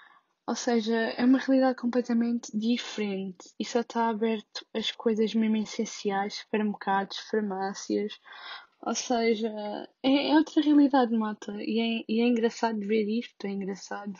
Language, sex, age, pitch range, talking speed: Portuguese, female, 10-29, 220-270 Hz, 130 wpm